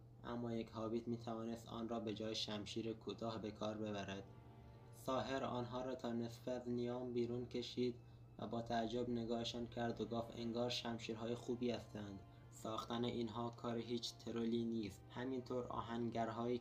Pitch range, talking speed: 110-120 Hz, 140 wpm